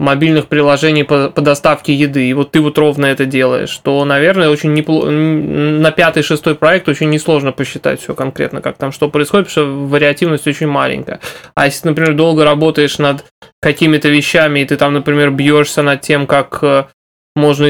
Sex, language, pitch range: male, Russian, 140-155 Hz